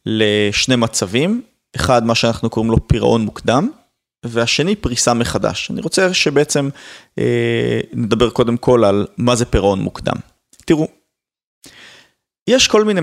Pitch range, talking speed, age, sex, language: 115-145 Hz, 130 wpm, 30-49, male, Hebrew